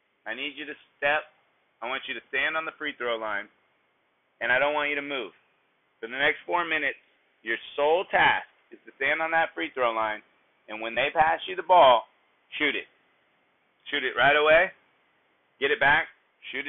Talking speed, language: 200 wpm, English